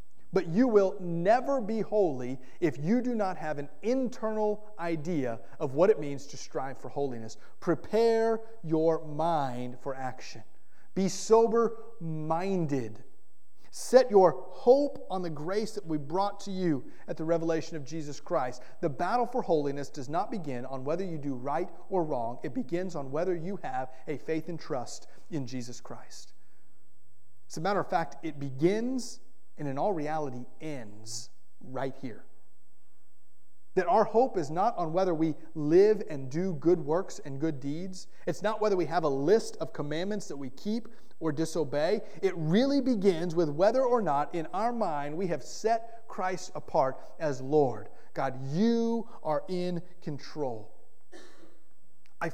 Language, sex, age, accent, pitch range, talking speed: English, male, 30-49, American, 140-200 Hz, 160 wpm